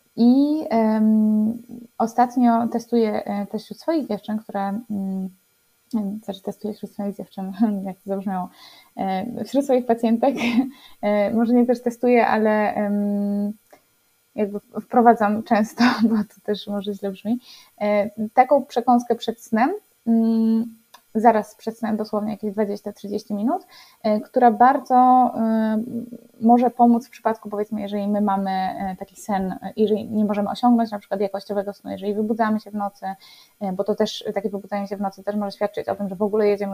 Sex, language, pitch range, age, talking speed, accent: female, Polish, 200-230 Hz, 20-39, 150 wpm, native